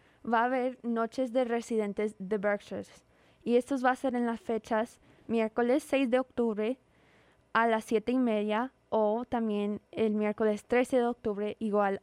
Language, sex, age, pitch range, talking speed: English, female, 20-39, 215-245 Hz, 165 wpm